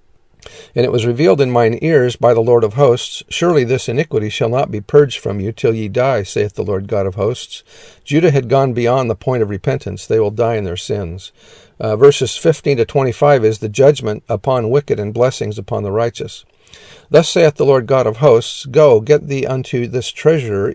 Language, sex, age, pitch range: English, male, 50-69, 110-140 Hz